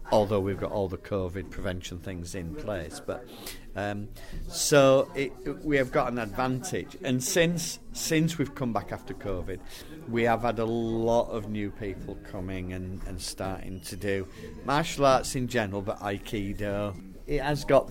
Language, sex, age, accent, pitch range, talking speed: English, male, 40-59, British, 100-125 Hz, 170 wpm